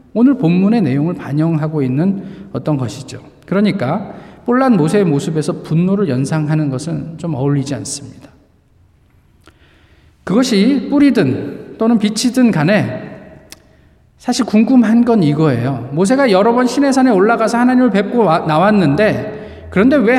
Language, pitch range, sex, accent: Korean, 140-220 Hz, male, native